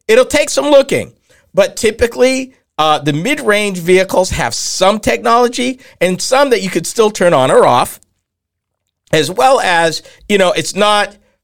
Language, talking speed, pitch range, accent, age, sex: English, 155 wpm, 145-215 Hz, American, 50-69, male